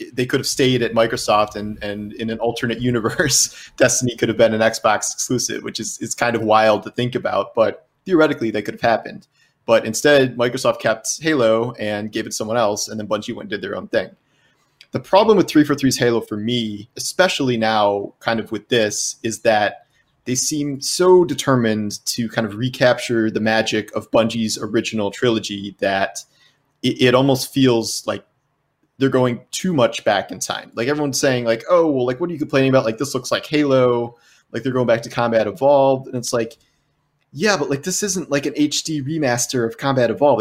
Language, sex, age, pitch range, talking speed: English, male, 30-49, 115-140 Hz, 200 wpm